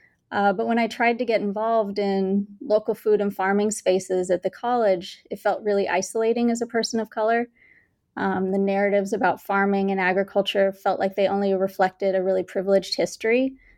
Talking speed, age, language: 185 wpm, 20-39, English